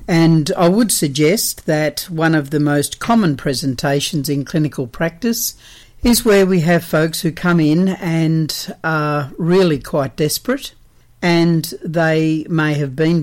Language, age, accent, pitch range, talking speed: English, 60-79, Australian, 140-175 Hz, 145 wpm